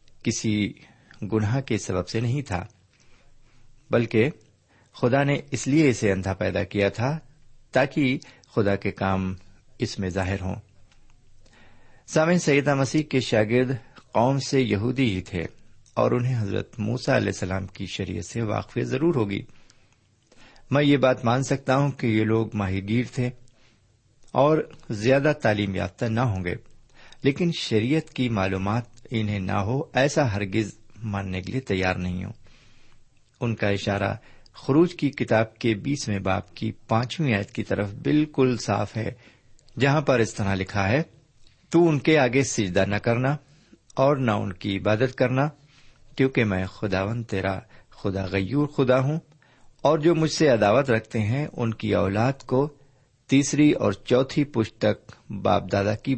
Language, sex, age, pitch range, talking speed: Urdu, male, 50-69, 100-135 Hz, 155 wpm